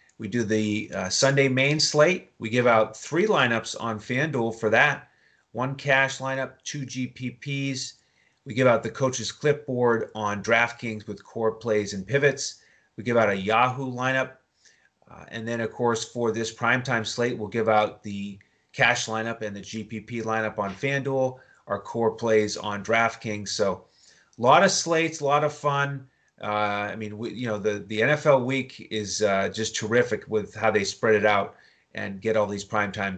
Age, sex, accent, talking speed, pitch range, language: 30-49, male, American, 180 wpm, 110-130 Hz, English